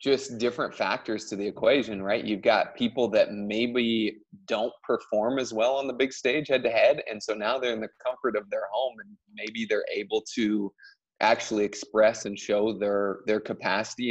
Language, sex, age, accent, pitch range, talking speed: English, male, 20-39, American, 100-120 Hz, 190 wpm